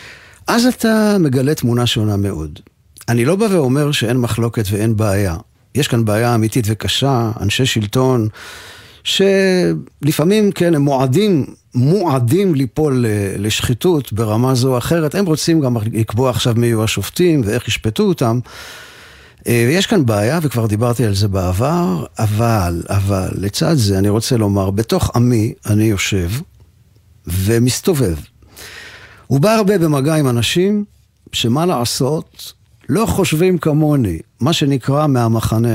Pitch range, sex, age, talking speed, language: 105-145 Hz, male, 50-69, 130 wpm, Hebrew